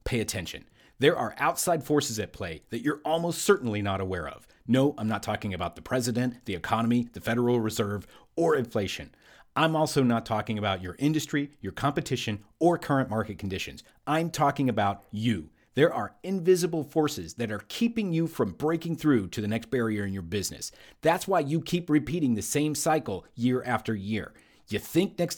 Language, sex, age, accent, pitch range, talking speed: English, male, 40-59, American, 115-165 Hz, 185 wpm